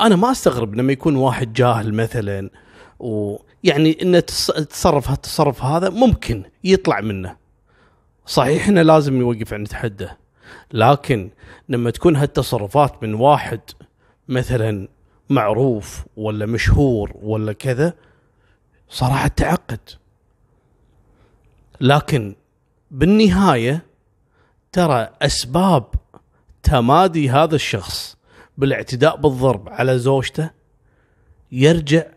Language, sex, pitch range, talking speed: Arabic, male, 115-160 Hz, 90 wpm